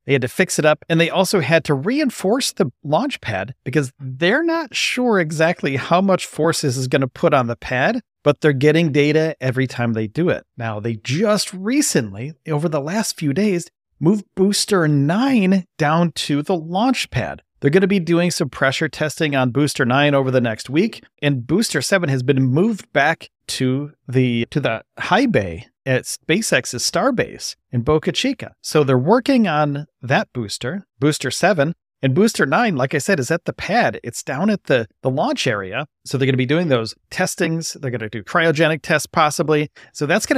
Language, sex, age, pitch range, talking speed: English, male, 40-59, 130-185 Hz, 200 wpm